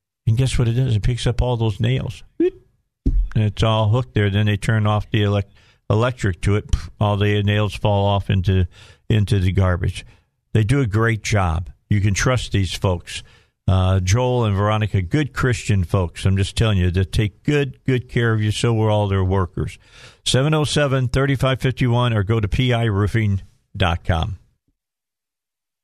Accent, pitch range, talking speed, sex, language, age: American, 105-140 Hz, 165 wpm, male, English, 50-69